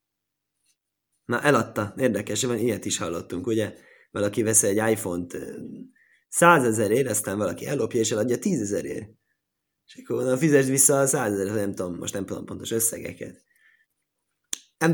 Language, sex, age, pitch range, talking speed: Hungarian, male, 20-39, 120-165 Hz, 135 wpm